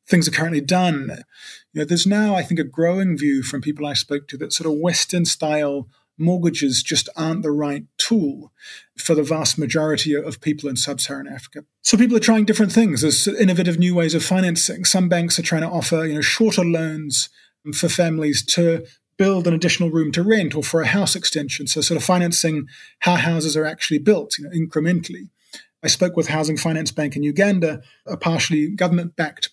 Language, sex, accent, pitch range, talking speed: English, male, British, 150-180 Hz, 195 wpm